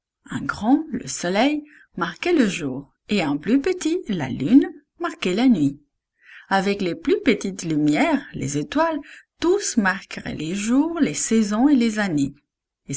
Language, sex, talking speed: English, female, 155 wpm